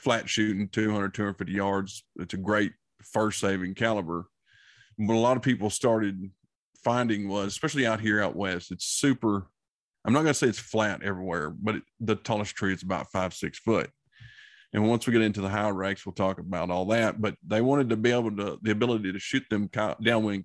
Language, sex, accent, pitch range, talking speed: English, male, American, 95-110 Hz, 205 wpm